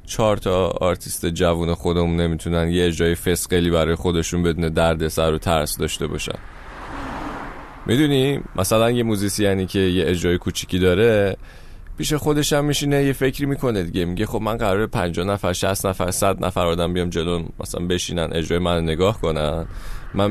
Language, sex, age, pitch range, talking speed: Persian, male, 20-39, 85-115 Hz, 165 wpm